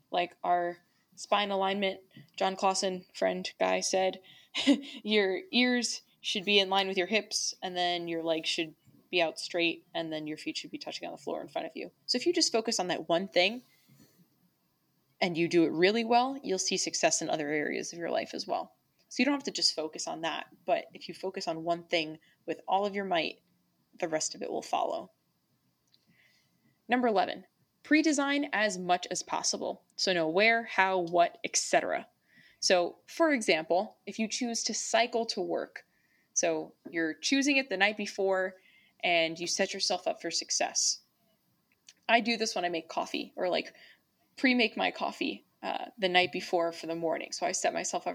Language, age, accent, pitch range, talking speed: English, 20-39, American, 175-230 Hz, 190 wpm